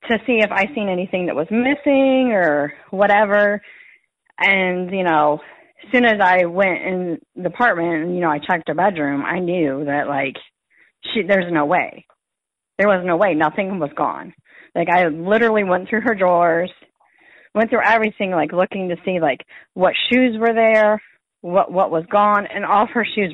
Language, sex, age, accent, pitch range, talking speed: English, female, 40-59, American, 160-210 Hz, 185 wpm